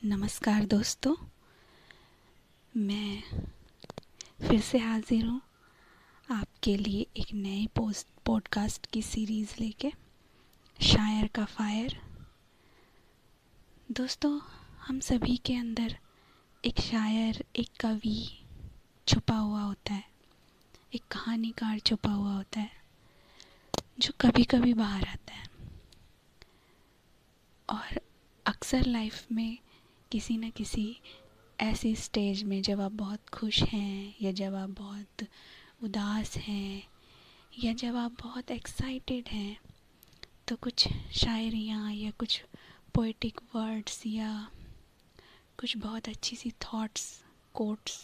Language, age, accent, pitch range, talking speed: Hindi, 20-39, native, 210-235 Hz, 105 wpm